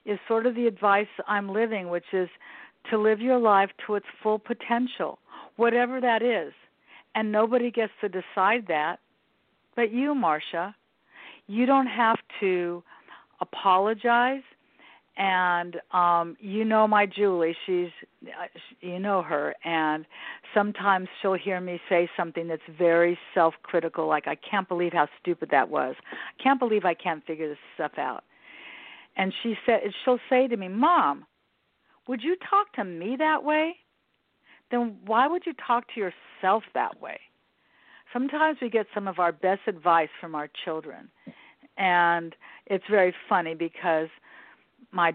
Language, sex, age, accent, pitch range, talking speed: English, female, 50-69, American, 170-225 Hz, 150 wpm